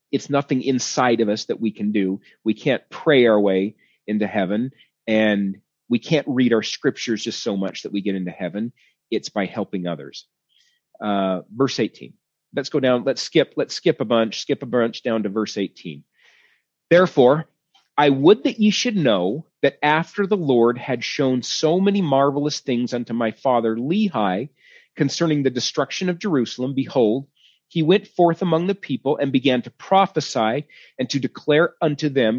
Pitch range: 115-165 Hz